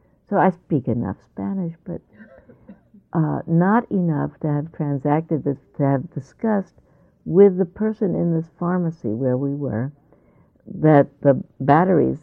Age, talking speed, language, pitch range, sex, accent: 60-79, 135 wpm, English, 130-175 Hz, female, American